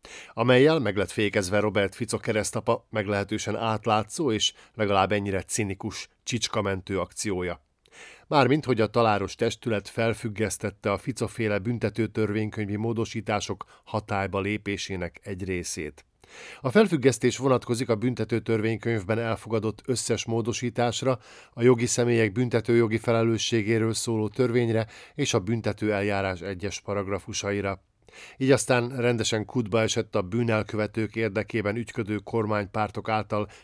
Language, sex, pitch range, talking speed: Hungarian, male, 100-120 Hz, 110 wpm